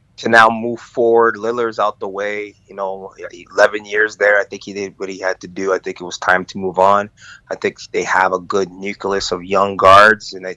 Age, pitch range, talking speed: 20-39, 95-115 Hz, 240 wpm